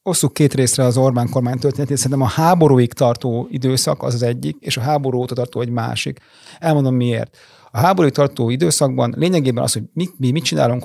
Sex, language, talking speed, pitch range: male, Hungarian, 195 wpm, 120-150 Hz